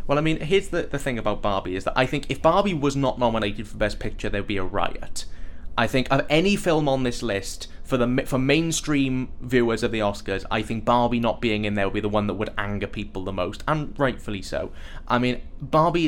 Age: 20-39